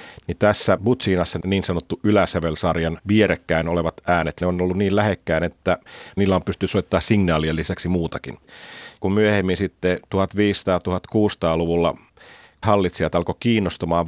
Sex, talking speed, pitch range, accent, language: male, 125 wpm, 90-105 Hz, native, Finnish